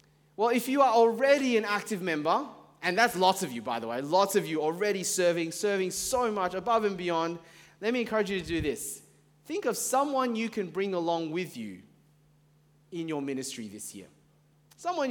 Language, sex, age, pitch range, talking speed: English, male, 30-49, 150-215 Hz, 195 wpm